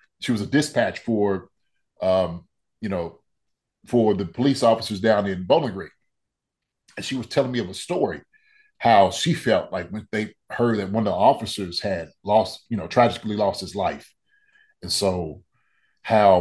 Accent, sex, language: American, male, English